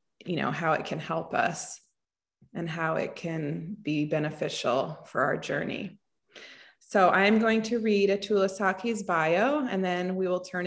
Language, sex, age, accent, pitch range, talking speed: English, female, 30-49, American, 180-220 Hz, 165 wpm